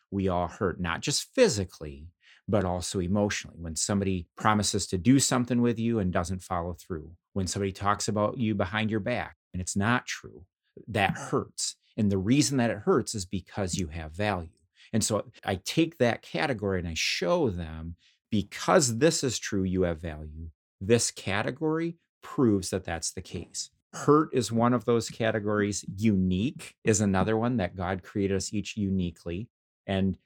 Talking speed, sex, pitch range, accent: 175 wpm, male, 90-115 Hz, American